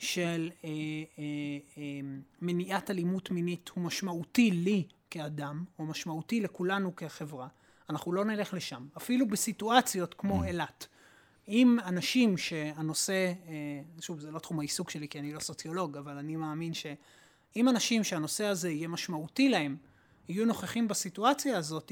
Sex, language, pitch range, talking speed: male, Hebrew, 165-235 Hz, 140 wpm